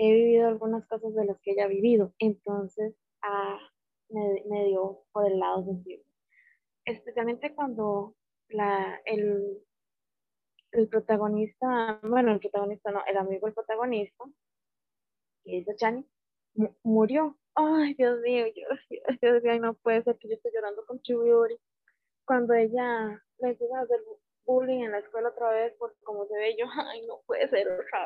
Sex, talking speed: female, 155 wpm